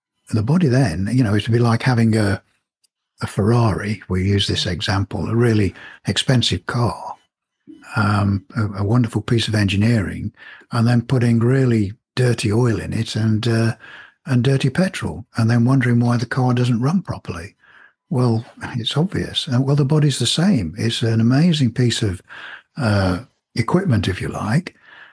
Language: English